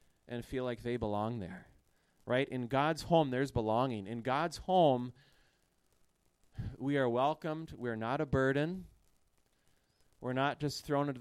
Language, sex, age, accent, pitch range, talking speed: English, male, 30-49, American, 120-155 Hz, 145 wpm